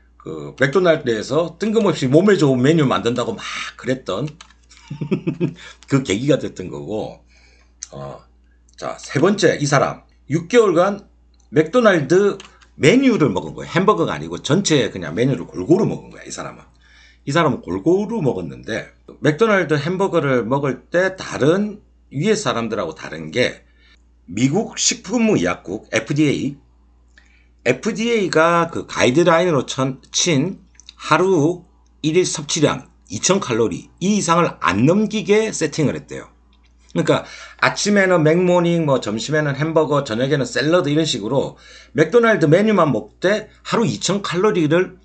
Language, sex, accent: Korean, male, native